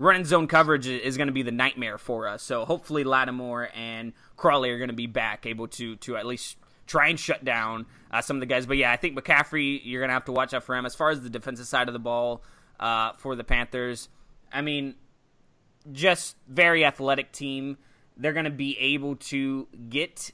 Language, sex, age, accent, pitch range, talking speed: English, male, 20-39, American, 125-160 Hz, 220 wpm